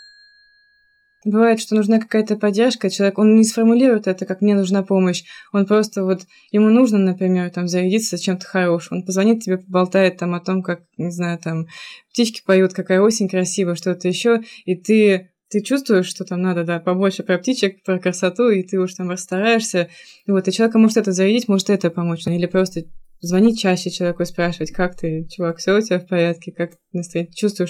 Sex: female